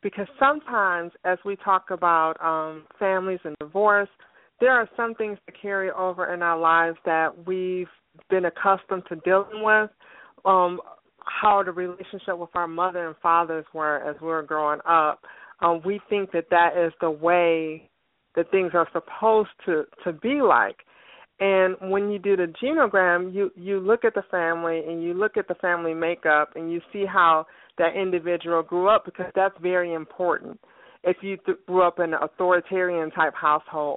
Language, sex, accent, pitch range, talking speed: English, female, American, 165-200 Hz, 175 wpm